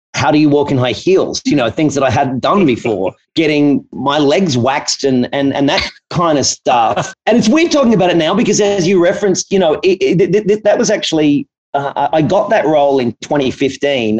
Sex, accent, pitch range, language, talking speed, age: male, Australian, 130-190 Hz, English, 220 wpm, 40-59